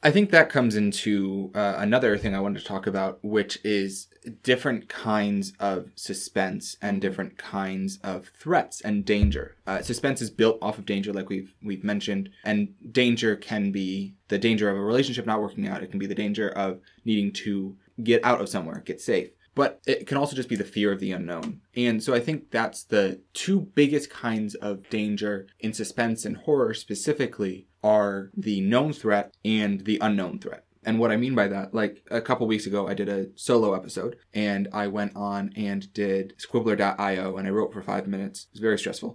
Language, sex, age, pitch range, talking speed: English, male, 20-39, 100-120 Hz, 200 wpm